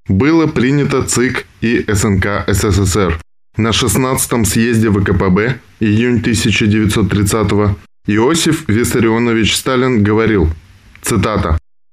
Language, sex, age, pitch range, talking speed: Russian, male, 20-39, 100-125 Hz, 85 wpm